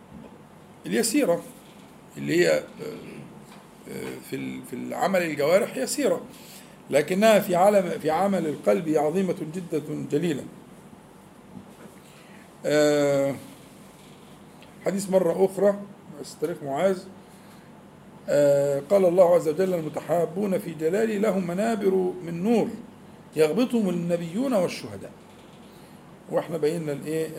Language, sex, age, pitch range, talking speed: Arabic, male, 50-69, 150-200 Hz, 85 wpm